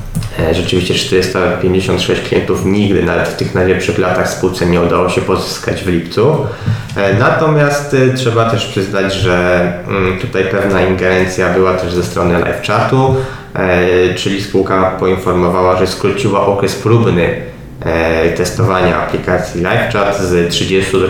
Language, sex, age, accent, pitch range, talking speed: Polish, male, 20-39, native, 90-100 Hz, 125 wpm